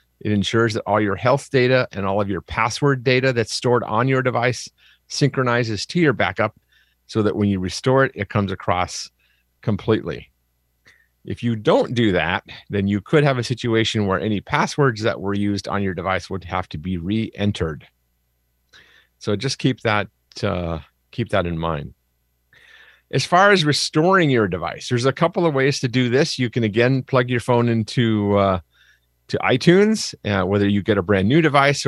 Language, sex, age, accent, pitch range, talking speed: English, male, 40-59, American, 95-130 Hz, 185 wpm